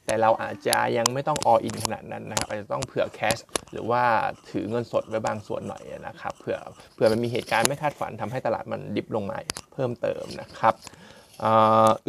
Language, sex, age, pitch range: Thai, male, 20-39, 115-140 Hz